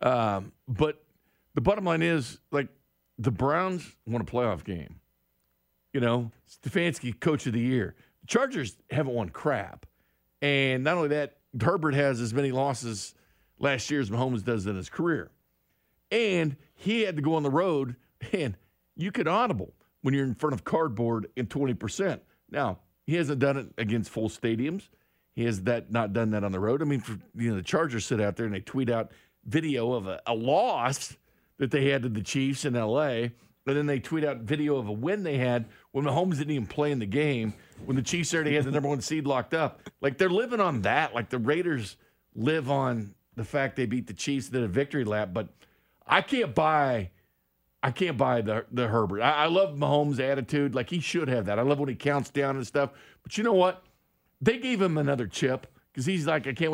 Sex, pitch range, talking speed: male, 115-150 Hz, 210 wpm